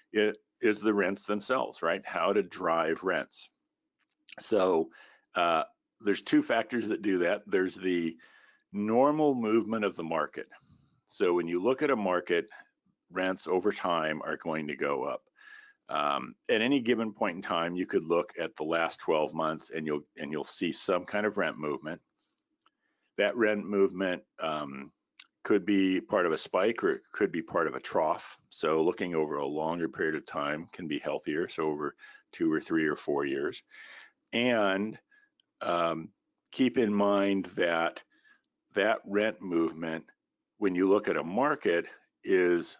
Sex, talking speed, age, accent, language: male, 165 wpm, 50-69, American, English